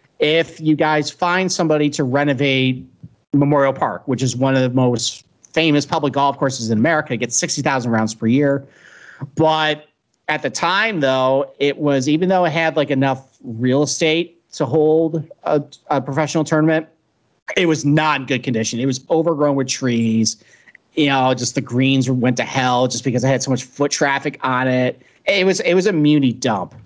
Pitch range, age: 125-155 Hz, 40-59